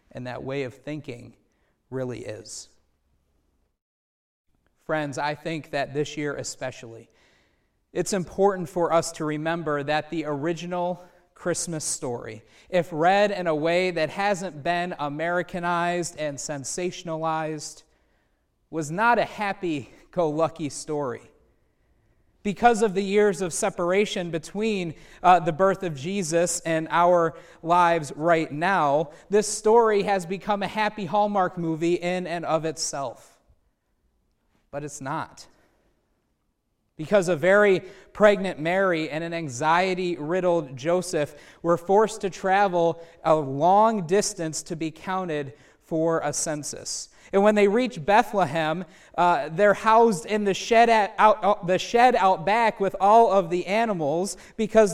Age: 30-49